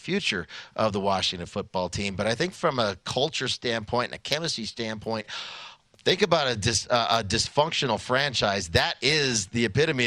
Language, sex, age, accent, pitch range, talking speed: English, male, 40-59, American, 105-125 Hz, 175 wpm